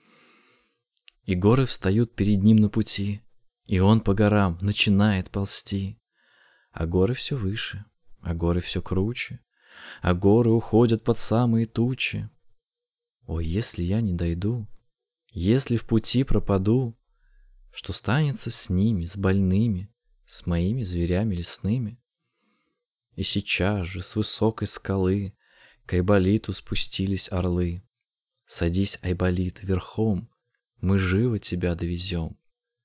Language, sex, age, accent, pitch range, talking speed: Russian, male, 20-39, native, 90-120 Hz, 115 wpm